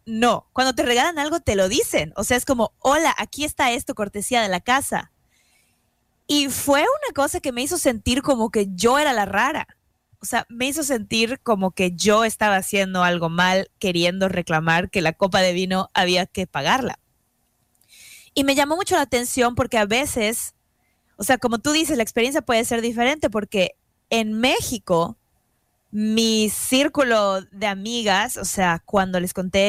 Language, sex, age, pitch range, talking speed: Spanish, female, 20-39, 195-250 Hz, 175 wpm